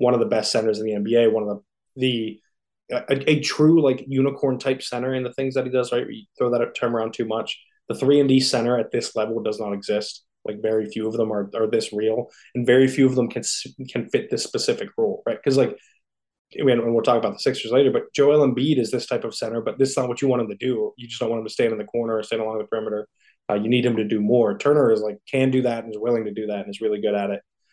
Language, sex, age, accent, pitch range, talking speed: English, male, 20-39, American, 110-145 Hz, 290 wpm